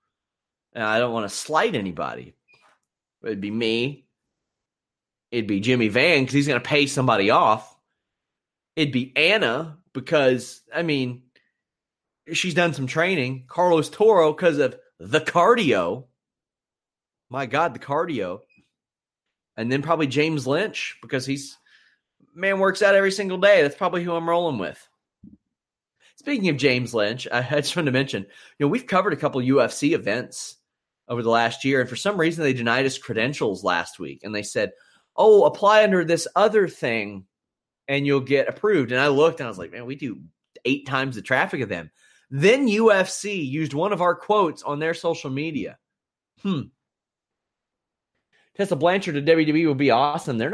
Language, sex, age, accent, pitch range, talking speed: English, male, 30-49, American, 130-175 Hz, 165 wpm